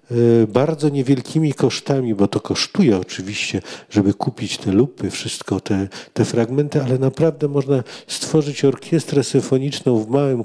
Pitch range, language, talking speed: 110-145 Hz, Polish, 130 wpm